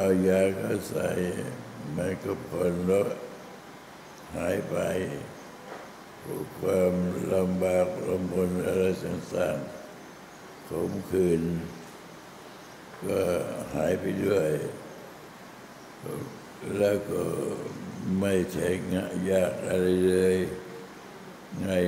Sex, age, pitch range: male, 60-79, 90-95 Hz